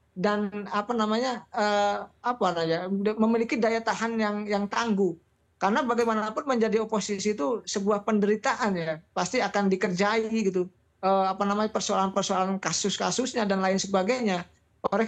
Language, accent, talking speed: Indonesian, native, 130 wpm